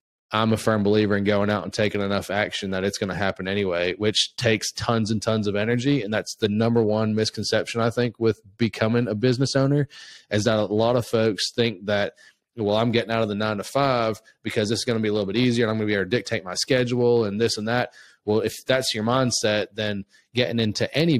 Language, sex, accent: English, male, American